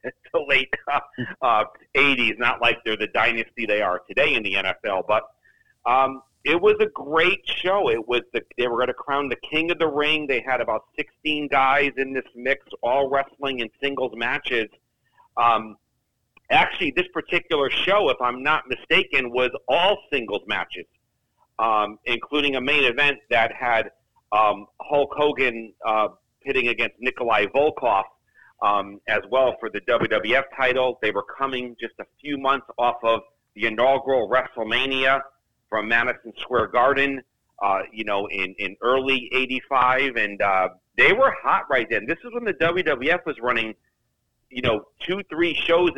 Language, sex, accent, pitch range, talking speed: English, male, American, 115-145 Hz, 165 wpm